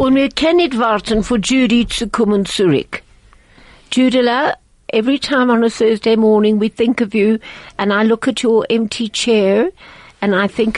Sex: female